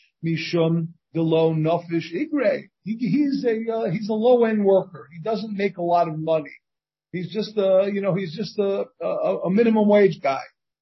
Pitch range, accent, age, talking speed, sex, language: 165-235 Hz, American, 50-69, 155 wpm, male, English